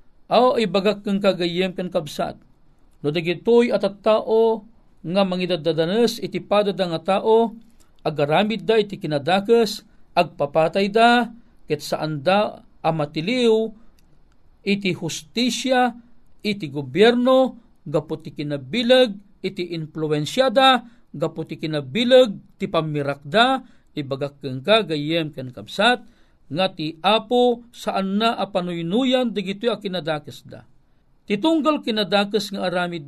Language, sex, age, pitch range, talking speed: Filipino, male, 50-69, 165-225 Hz, 110 wpm